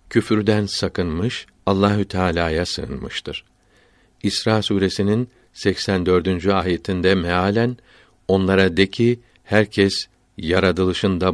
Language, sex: Turkish, male